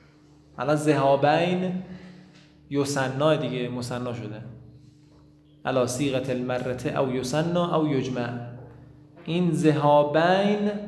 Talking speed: 85 wpm